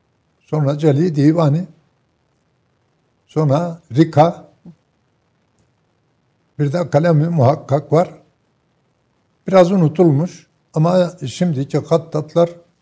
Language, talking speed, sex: Turkish, 70 wpm, male